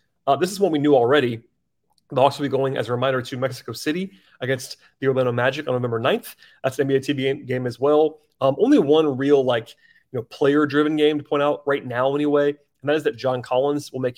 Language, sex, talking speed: English, male, 235 wpm